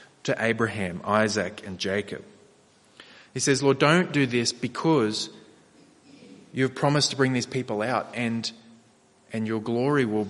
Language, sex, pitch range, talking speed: English, male, 105-125 Hz, 145 wpm